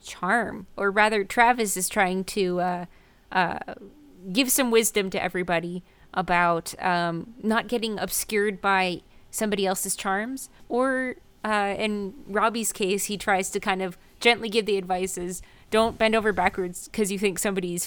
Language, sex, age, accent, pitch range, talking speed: English, female, 20-39, American, 185-235 Hz, 155 wpm